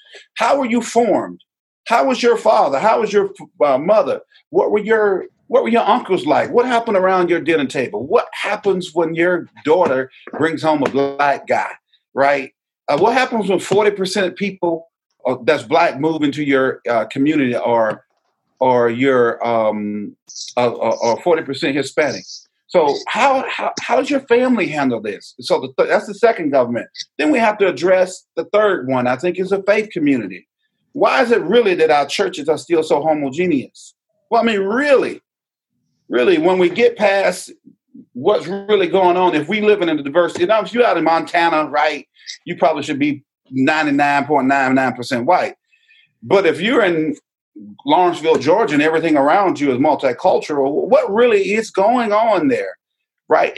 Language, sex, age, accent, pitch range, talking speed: English, male, 40-59, American, 155-235 Hz, 170 wpm